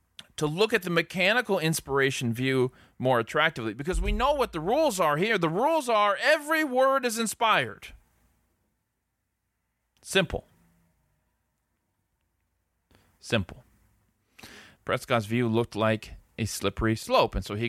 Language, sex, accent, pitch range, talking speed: English, male, American, 110-180 Hz, 120 wpm